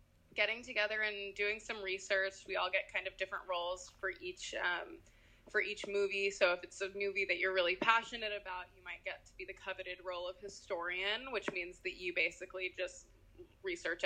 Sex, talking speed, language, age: female, 195 wpm, English, 20-39